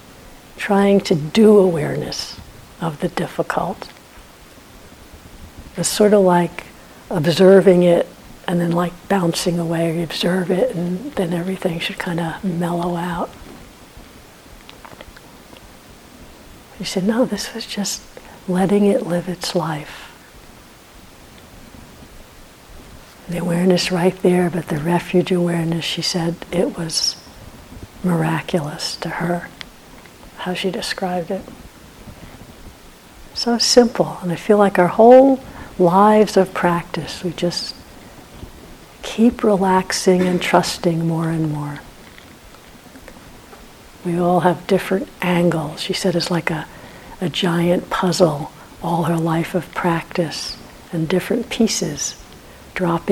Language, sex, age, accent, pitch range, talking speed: English, female, 60-79, American, 165-190 Hz, 115 wpm